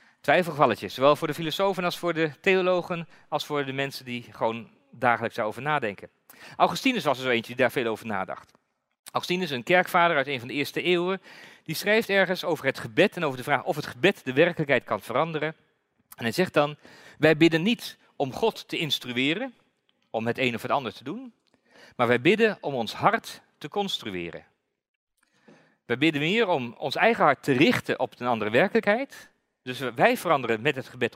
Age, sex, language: 40-59, male, Dutch